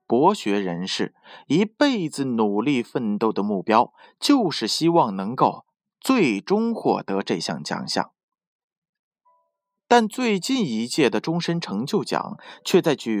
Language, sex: Chinese, male